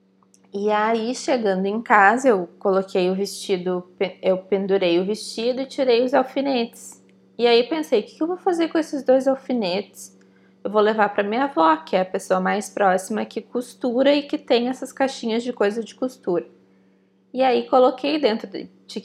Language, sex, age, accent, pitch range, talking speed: Portuguese, female, 20-39, Brazilian, 185-260 Hz, 180 wpm